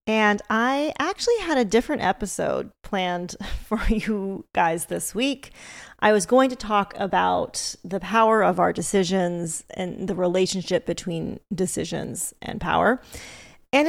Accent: American